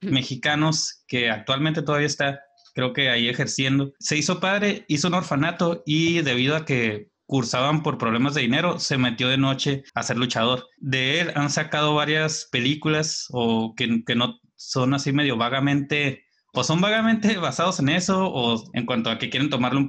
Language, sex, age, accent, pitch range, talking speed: Spanish, male, 30-49, Mexican, 125-155 Hz, 180 wpm